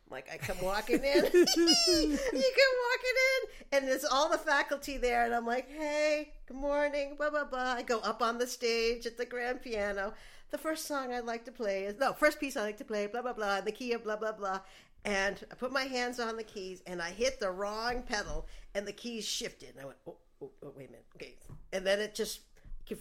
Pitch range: 200-275 Hz